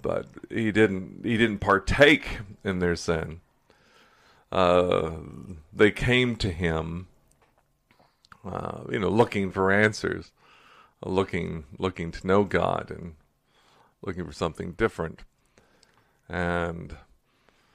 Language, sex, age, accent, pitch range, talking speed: English, male, 40-59, American, 85-105 Hz, 105 wpm